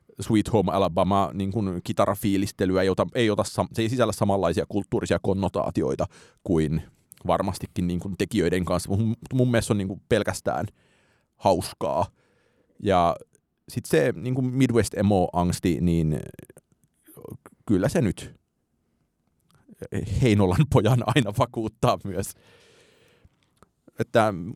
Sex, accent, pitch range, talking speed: male, native, 95-125 Hz, 115 wpm